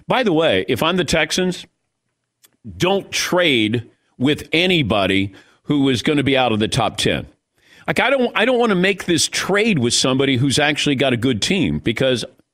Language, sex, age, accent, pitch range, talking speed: English, male, 50-69, American, 130-190 Hz, 190 wpm